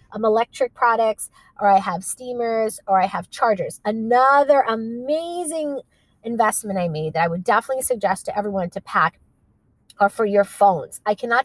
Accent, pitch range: American, 185-260 Hz